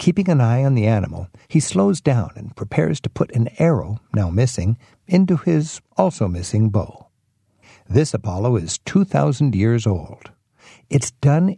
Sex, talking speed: male, 150 wpm